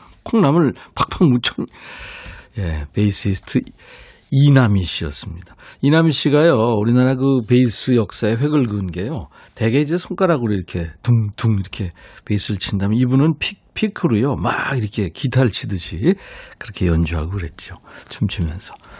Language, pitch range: Korean, 95-130 Hz